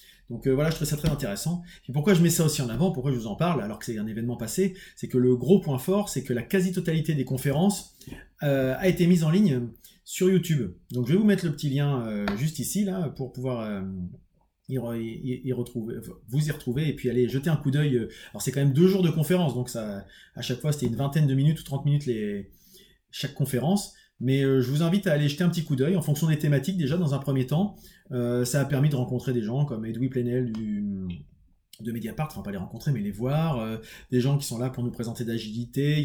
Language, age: French, 30-49